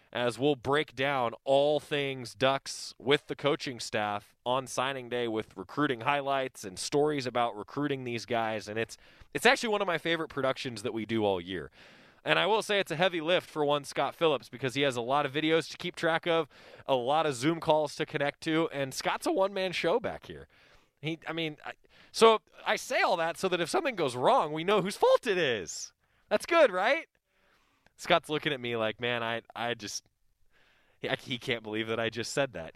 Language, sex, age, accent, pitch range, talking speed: English, male, 20-39, American, 120-170 Hz, 215 wpm